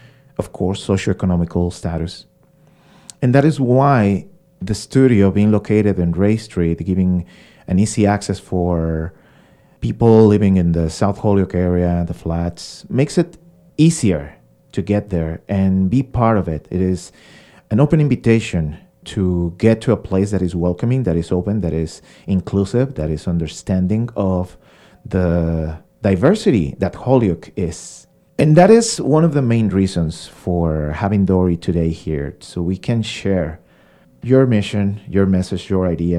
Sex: male